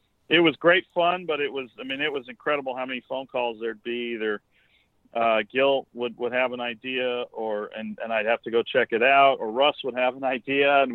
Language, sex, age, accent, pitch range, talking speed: English, male, 40-59, American, 115-135 Hz, 235 wpm